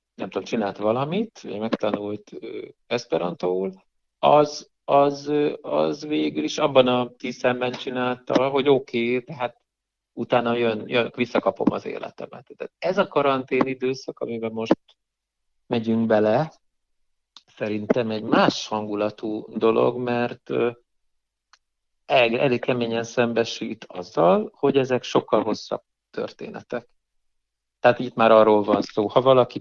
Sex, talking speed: male, 120 wpm